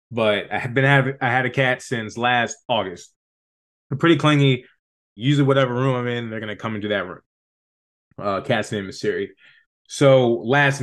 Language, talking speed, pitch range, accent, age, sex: English, 185 wpm, 110-140 Hz, American, 20-39, male